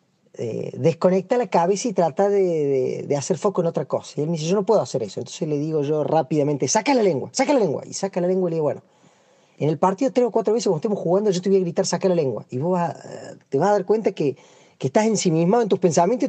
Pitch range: 150-200 Hz